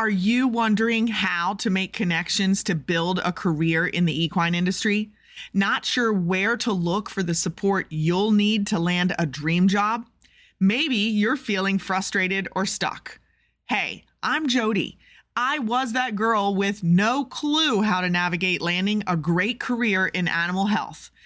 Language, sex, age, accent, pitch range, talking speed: English, female, 30-49, American, 180-230 Hz, 160 wpm